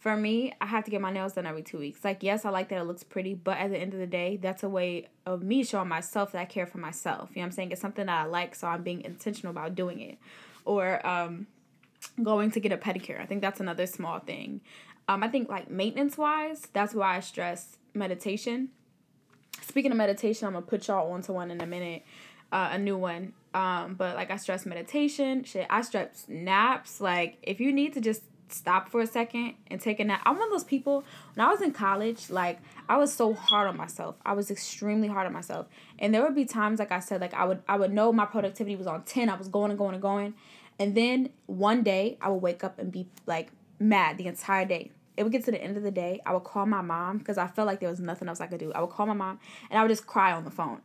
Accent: American